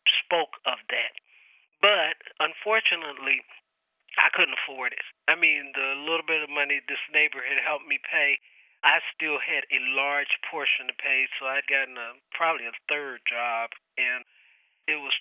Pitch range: 135-155 Hz